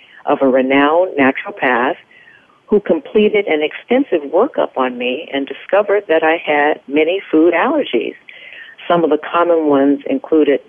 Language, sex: English, female